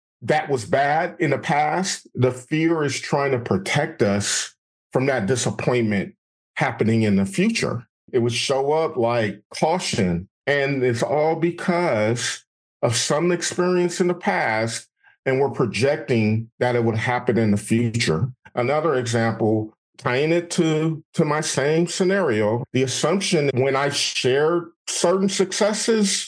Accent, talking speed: American, 145 wpm